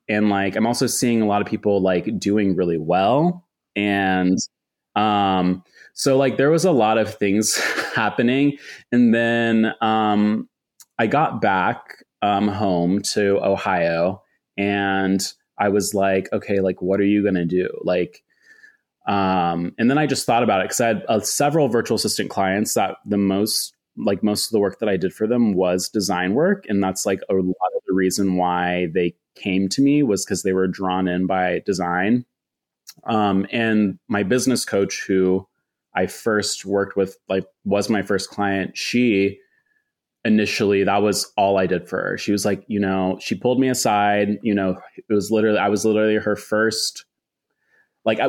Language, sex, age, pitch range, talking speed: English, male, 30-49, 95-110 Hz, 180 wpm